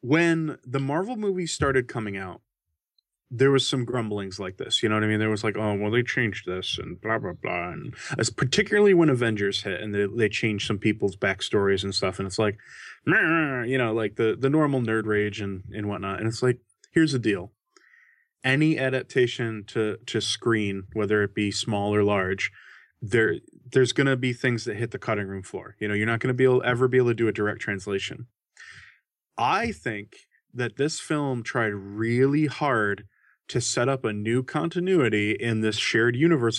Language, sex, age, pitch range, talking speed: English, male, 20-39, 105-135 Hz, 205 wpm